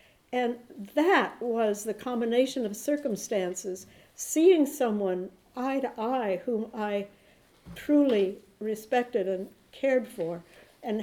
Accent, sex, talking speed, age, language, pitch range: American, female, 110 wpm, 60-79, English, 210-265 Hz